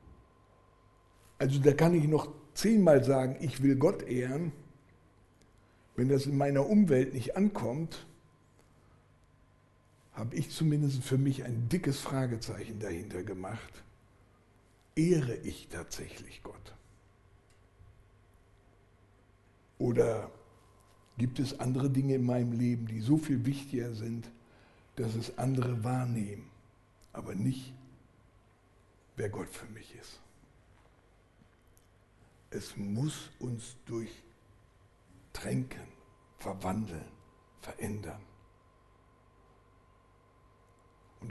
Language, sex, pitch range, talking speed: German, male, 100-135 Hz, 90 wpm